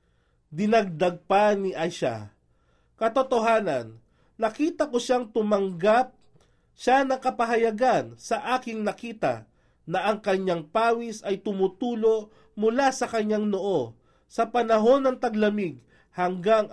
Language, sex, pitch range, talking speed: Filipino, male, 150-230 Hz, 105 wpm